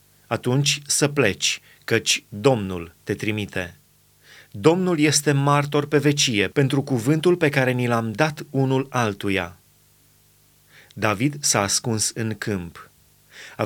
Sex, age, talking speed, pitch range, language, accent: male, 30-49, 120 wpm, 115-145 Hz, Romanian, native